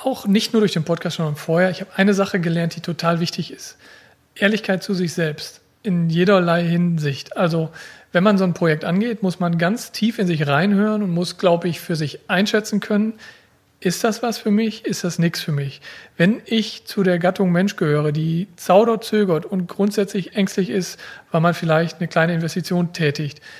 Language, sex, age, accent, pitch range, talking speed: German, male, 40-59, German, 160-195 Hz, 195 wpm